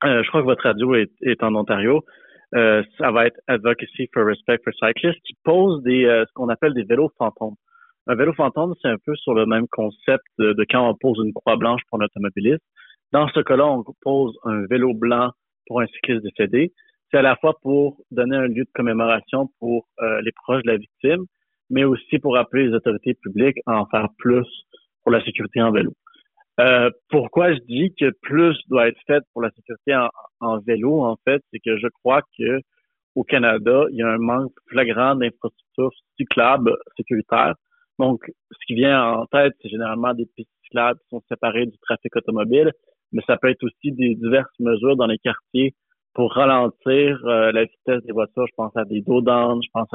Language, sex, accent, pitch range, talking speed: French, male, French, 115-135 Hz, 205 wpm